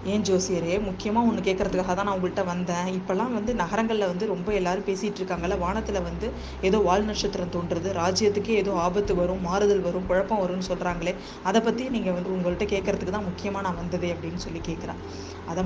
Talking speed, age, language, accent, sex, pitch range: 175 wpm, 20-39, Tamil, native, female, 180-210 Hz